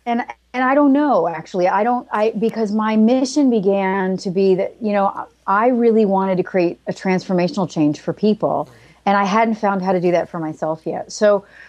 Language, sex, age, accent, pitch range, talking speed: English, female, 30-49, American, 170-205 Hz, 205 wpm